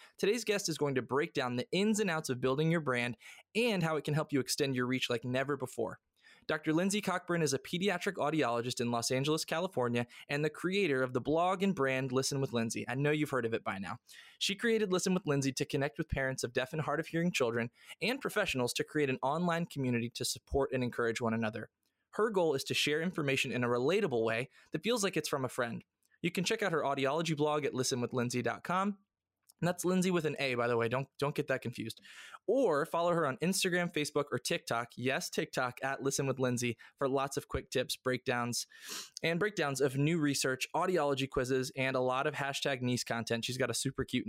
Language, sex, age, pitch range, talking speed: English, male, 20-39, 125-165 Hz, 225 wpm